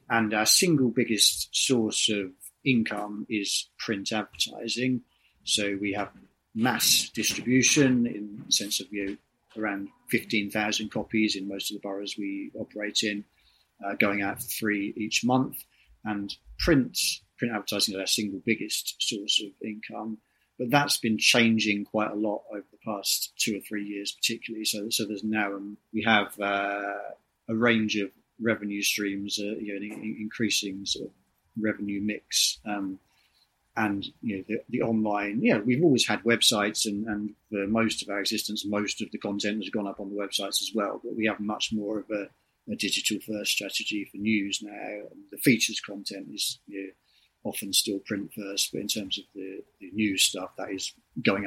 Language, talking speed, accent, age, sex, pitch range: English, 180 wpm, British, 40-59, male, 100-110 Hz